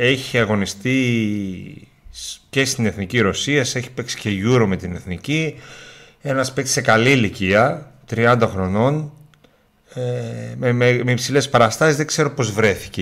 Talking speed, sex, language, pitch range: 135 wpm, male, Greek, 95-125 Hz